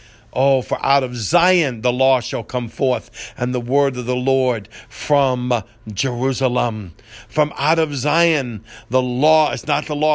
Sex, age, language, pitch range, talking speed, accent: male, 50-69, English, 125-150 Hz, 165 wpm, American